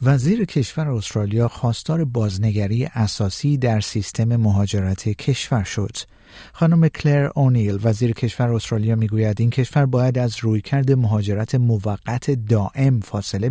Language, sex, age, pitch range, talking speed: Persian, male, 50-69, 110-145 Hz, 120 wpm